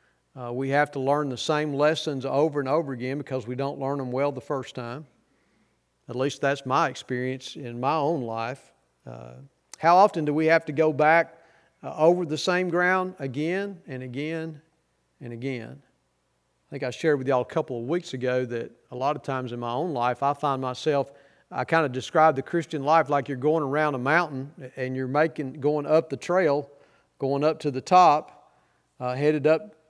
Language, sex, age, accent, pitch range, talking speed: English, male, 40-59, American, 130-160 Hz, 200 wpm